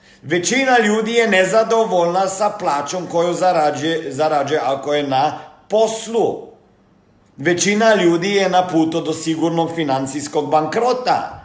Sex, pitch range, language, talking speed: male, 155-205 Hz, Croatian, 110 wpm